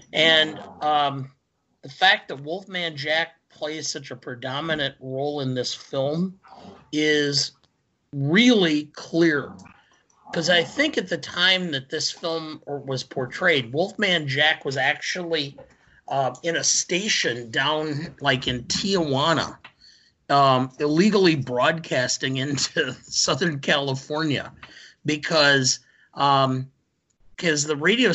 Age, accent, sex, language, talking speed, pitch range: 50-69, American, male, English, 110 wpm, 135-165 Hz